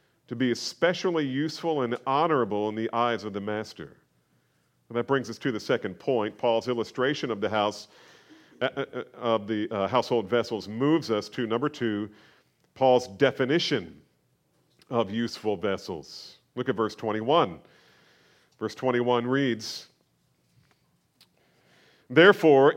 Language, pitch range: English, 115-160 Hz